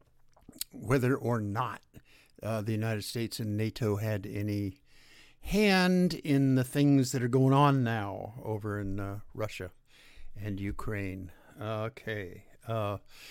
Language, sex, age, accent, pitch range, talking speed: English, male, 60-79, American, 105-130 Hz, 125 wpm